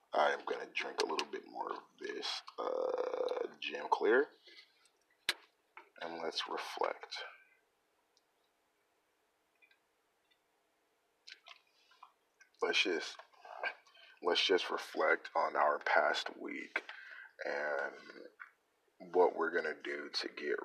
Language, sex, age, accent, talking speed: English, male, 30-49, American, 100 wpm